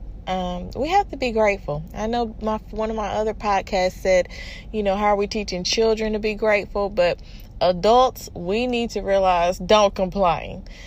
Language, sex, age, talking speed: English, female, 20-39, 180 wpm